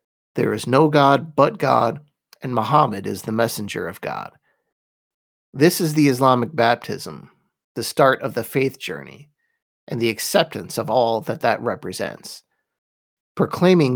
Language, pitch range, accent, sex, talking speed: English, 115-145 Hz, American, male, 140 wpm